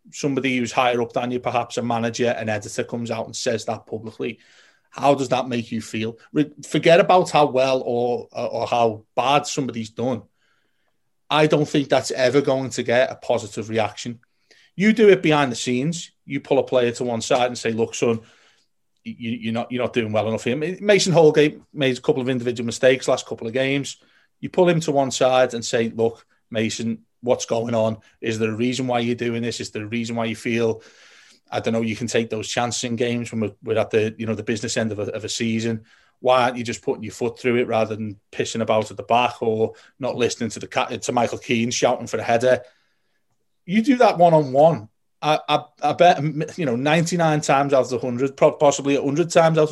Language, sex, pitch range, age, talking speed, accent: English, male, 115-145 Hz, 30-49, 220 wpm, British